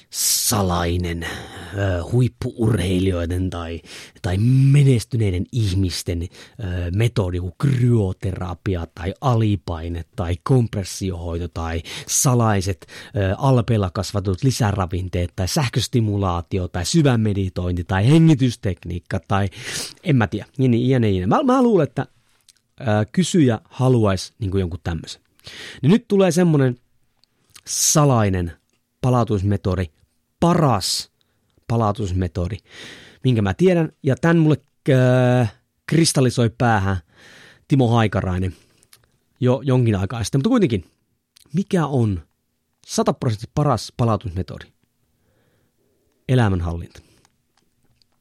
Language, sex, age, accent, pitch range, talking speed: Finnish, male, 30-49, native, 95-125 Hz, 85 wpm